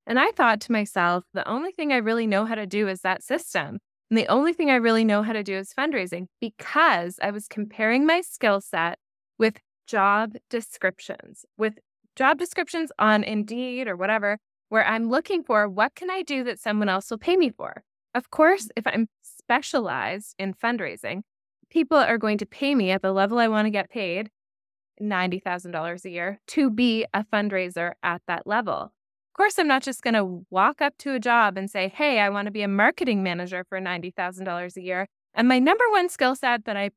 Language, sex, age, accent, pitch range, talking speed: English, female, 20-39, American, 195-255 Hz, 205 wpm